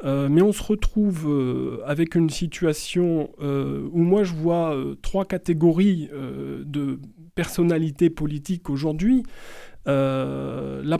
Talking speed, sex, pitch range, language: 125 wpm, male, 140-170 Hz, French